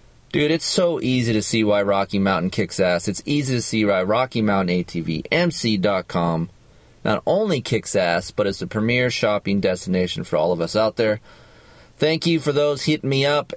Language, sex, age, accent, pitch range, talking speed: English, male, 30-49, American, 100-120 Hz, 175 wpm